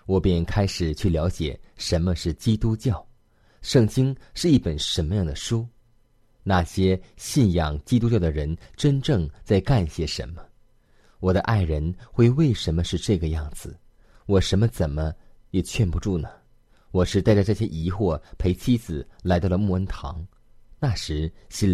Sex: male